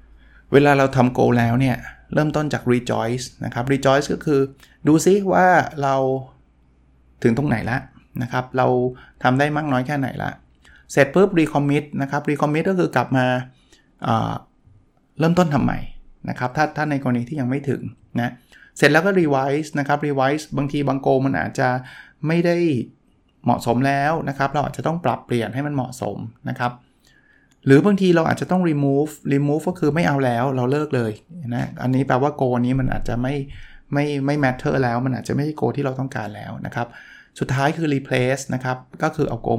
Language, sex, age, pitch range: Thai, male, 20-39, 120-145 Hz